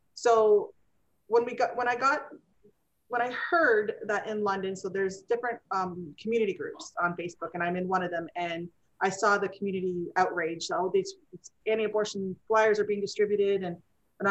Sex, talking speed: female, 180 wpm